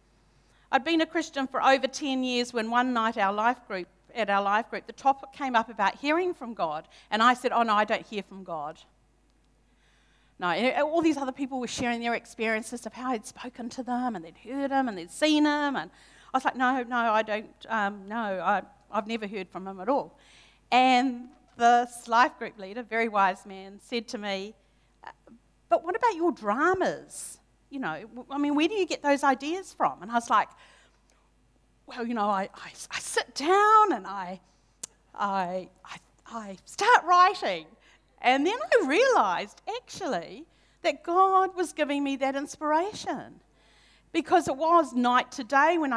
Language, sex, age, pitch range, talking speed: English, female, 40-59, 220-285 Hz, 185 wpm